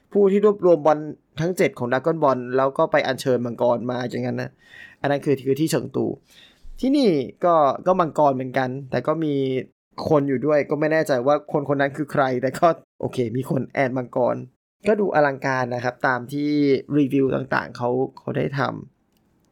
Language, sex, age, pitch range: Thai, male, 20-39, 130-165 Hz